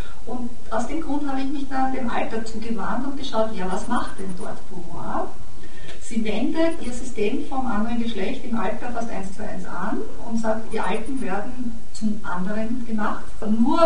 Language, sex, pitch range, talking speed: German, female, 205-240 Hz, 180 wpm